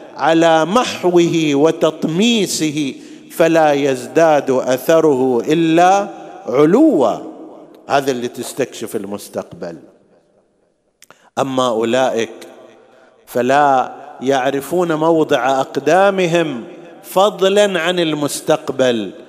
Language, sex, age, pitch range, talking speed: Arabic, male, 50-69, 130-175 Hz, 65 wpm